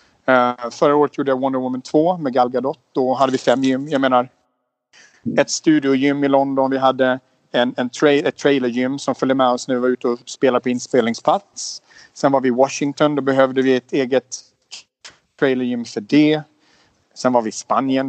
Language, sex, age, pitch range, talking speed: Swedish, male, 40-59, 125-140 Hz, 205 wpm